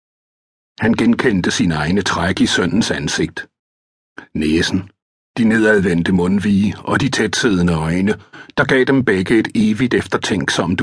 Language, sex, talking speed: Danish, male, 120 wpm